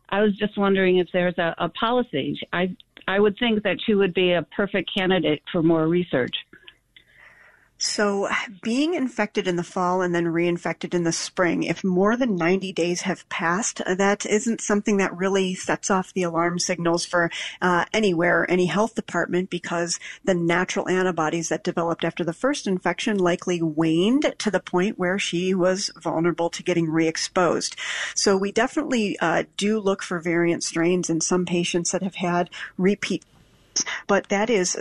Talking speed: 170 wpm